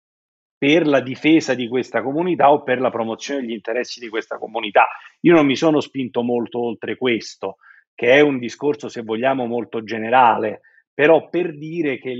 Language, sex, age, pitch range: Italian, male, 40-59, 120-155 Hz